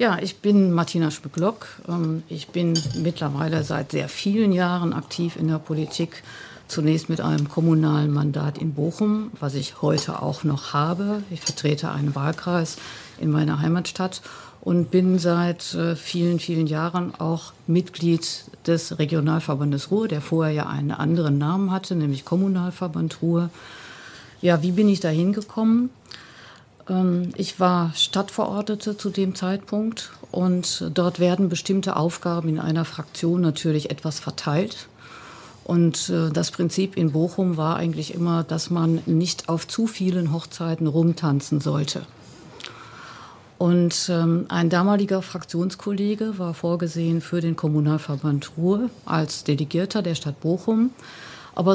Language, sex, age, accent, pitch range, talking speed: German, female, 50-69, German, 155-185 Hz, 130 wpm